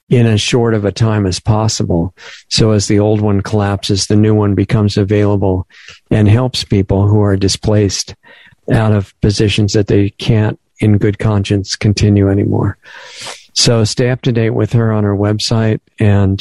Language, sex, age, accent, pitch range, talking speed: English, male, 50-69, American, 100-110 Hz, 170 wpm